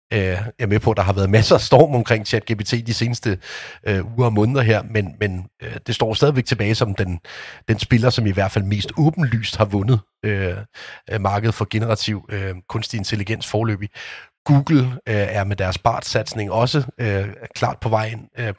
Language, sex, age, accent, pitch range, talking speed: Danish, male, 30-49, native, 100-125 Hz, 180 wpm